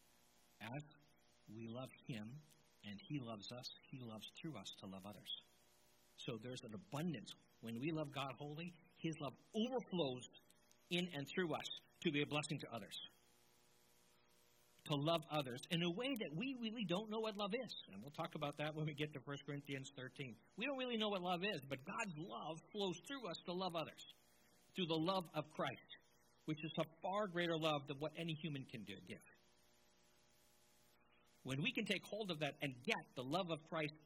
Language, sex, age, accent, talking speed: English, male, 60-79, American, 190 wpm